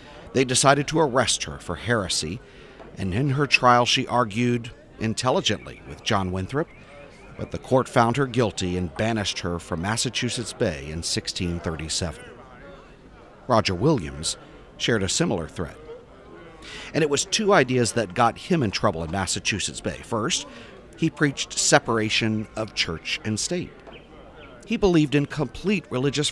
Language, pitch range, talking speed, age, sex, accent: English, 95-135 Hz, 145 wpm, 50-69, male, American